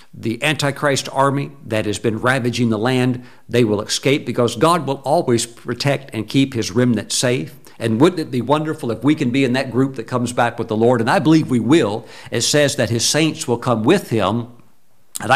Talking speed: 215 wpm